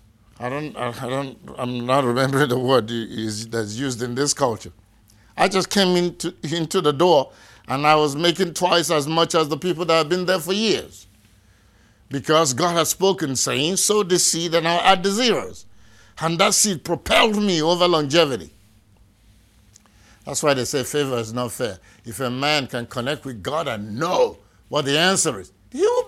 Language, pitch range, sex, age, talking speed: English, 105-165 Hz, male, 50-69, 185 wpm